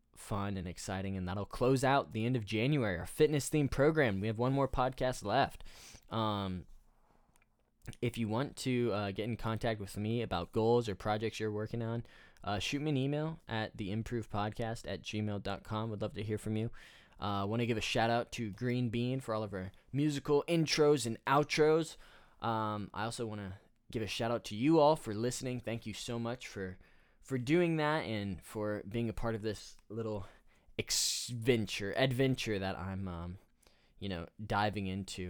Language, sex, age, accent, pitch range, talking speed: English, male, 10-29, American, 100-125 Hz, 185 wpm